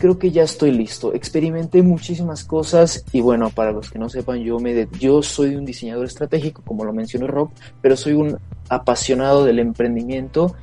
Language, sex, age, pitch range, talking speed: Spanish, male, 30-49, 125-165 Hz, 185 wpm